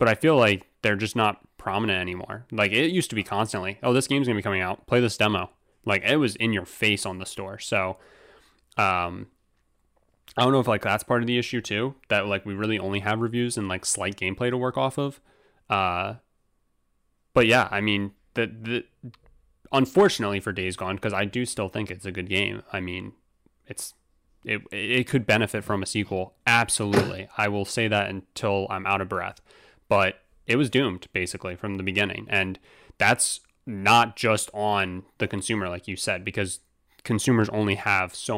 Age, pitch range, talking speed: 20-39, 95-115 Hz, 195 wpm